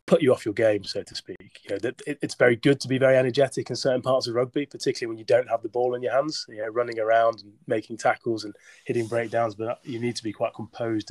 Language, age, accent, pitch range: English, 20-39, British, 105-120 Hz